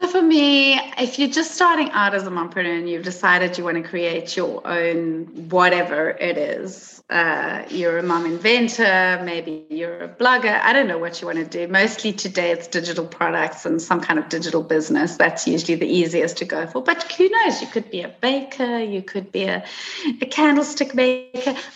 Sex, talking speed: female, 200 wpm